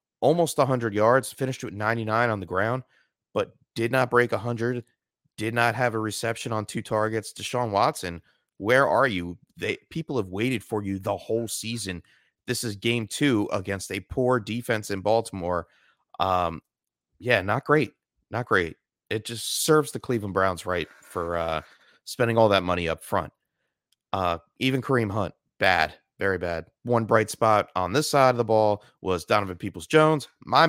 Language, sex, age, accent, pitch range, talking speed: English, male, 30-49, American, 90-115 Hz, 170 wpm